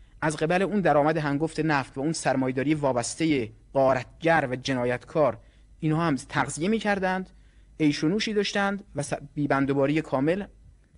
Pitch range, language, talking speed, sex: 120-165 Hz, Persian, 120 wpm, male